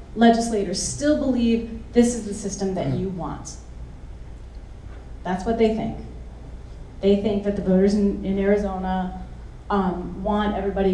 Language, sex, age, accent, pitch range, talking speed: English, female, 30-49, American, 170-215 Hz, 135 wpm